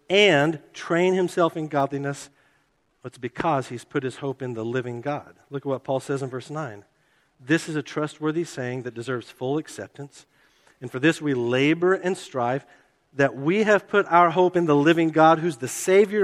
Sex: male